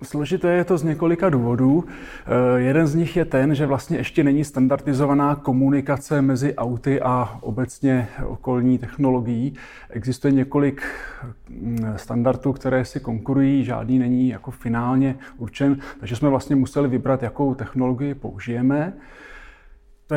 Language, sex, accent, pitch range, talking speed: Czech, male, native, 120-140 Hz, 130 wpm